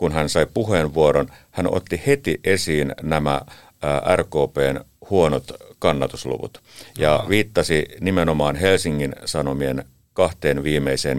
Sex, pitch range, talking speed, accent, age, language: male, 70-85 Hz, 100 wpm, native, 50-69, Finnish